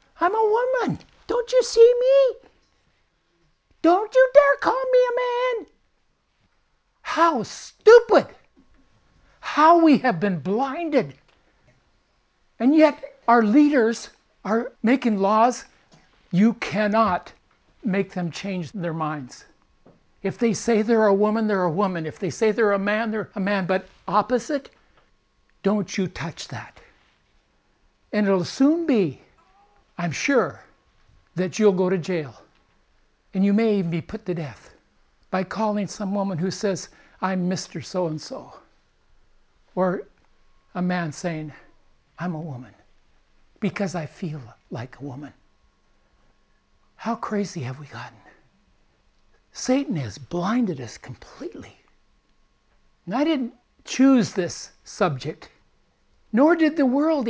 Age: 60-79